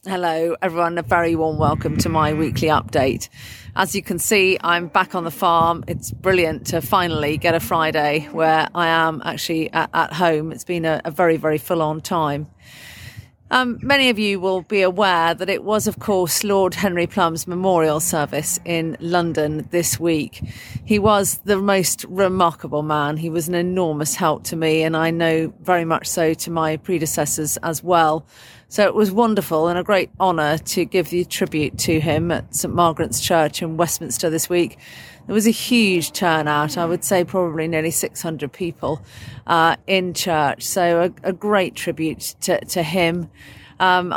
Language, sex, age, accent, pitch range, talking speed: English, female, 40-59, British, 155-180 Hz, 180 wpm